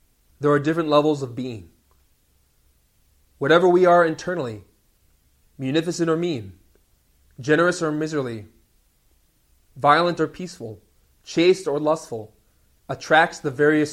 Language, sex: English, male